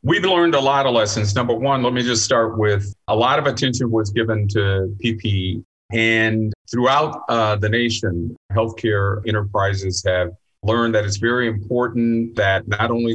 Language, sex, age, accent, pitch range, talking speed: English, male, 40-59, American, 100-115 Hz, 170 wpm